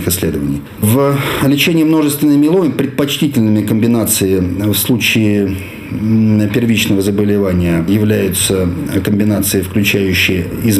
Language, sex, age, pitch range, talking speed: Russian, male, 50-69, 100-115 Hz, 85 wpm